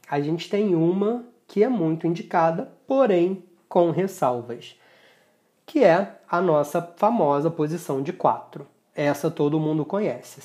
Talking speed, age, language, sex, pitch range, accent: 130 wpm, 20-39, Portuguese, male, 145-195 Hz, Brazilian